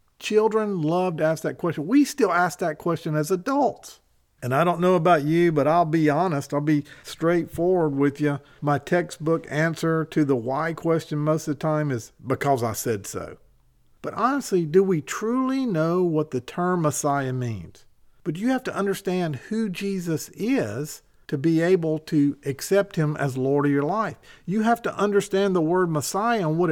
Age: 50-69